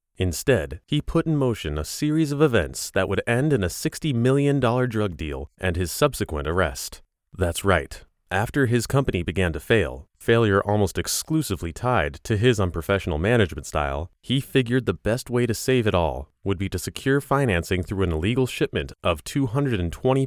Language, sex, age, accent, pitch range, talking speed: English, male, 30-49, American, 85-130 Hz, 175 wpm